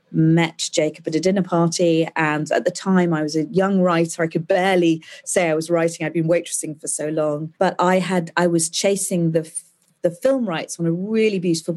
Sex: female